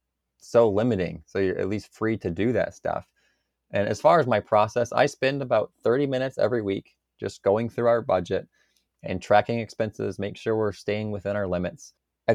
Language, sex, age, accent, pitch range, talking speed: English, male, 20-39, American, 95-115 Hz, 195 wpm